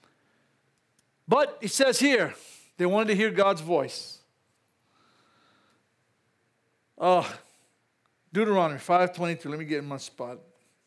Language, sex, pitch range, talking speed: English, male, 160-210 Hz, 105 wpm